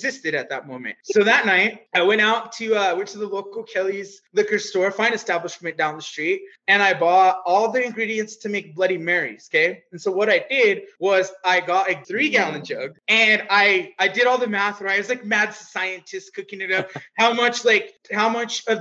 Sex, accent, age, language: male, American, 20-39, English